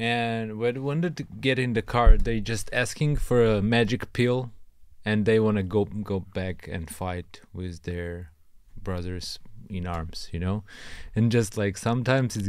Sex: male